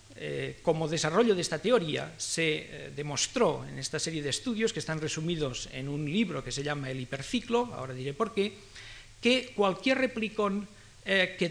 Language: Spanish